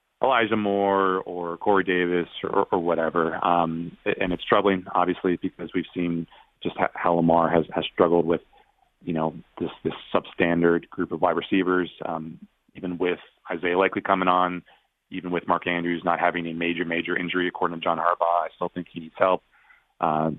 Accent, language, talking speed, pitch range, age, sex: American, English, 175 wpm, 80-90 Hz, 30-49, male